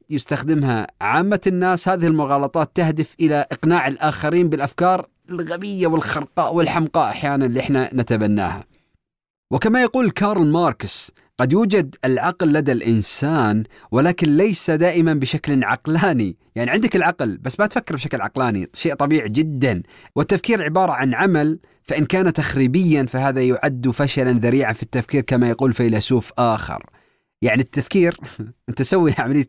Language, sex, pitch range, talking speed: Arabic, male, 120-160 Hz, 130 wpm